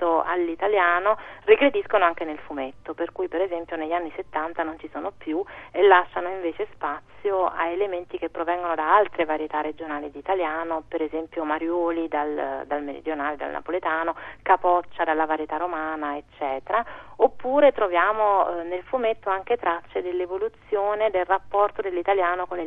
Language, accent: Italian, native